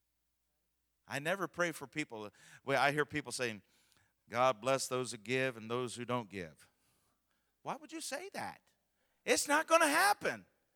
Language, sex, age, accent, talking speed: English, male, 50-69, American, 160 wpm